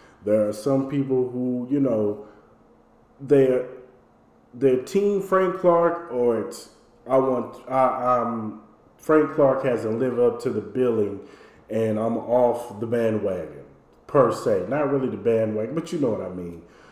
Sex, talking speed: male, 150 wpm